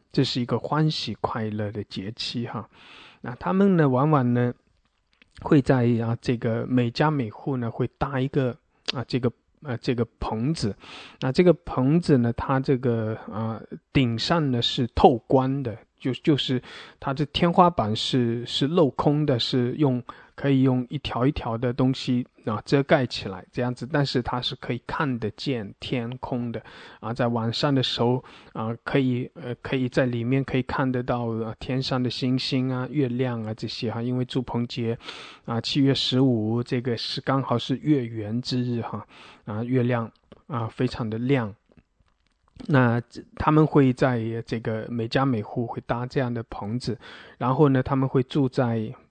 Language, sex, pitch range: English, male, 115-135 Hz